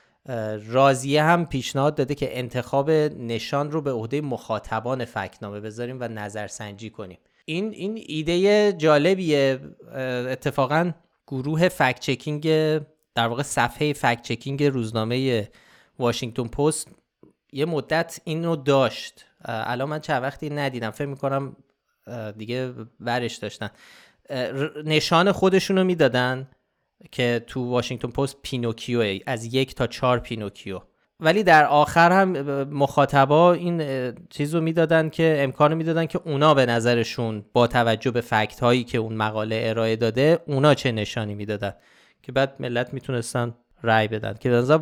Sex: male